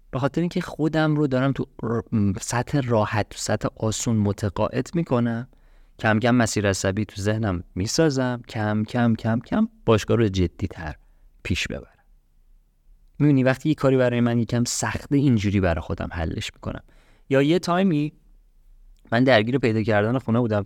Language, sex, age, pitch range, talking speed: Persian, male, 30-49, 100-140 Hz, 155 wpm